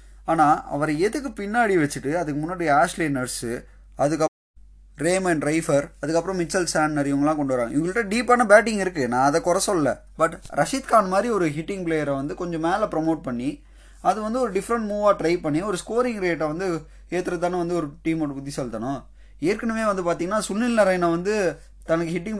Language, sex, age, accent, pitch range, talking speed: Tamil, male, 20-39, native, 145-195 Hz, 170 wpm